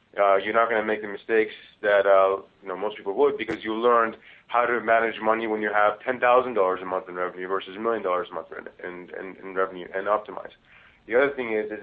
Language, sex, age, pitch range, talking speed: English, male, 30-49, 105-115 Hz, 240 wpm